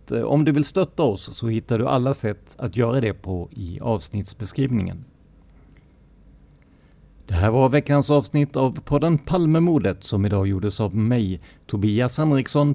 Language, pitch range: Swedish, 105-140 Hz